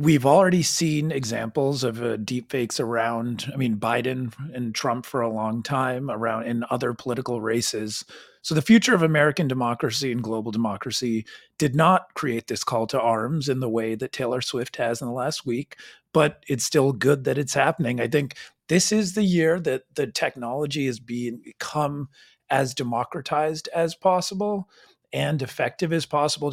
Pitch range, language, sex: 120-155 Hz, English, male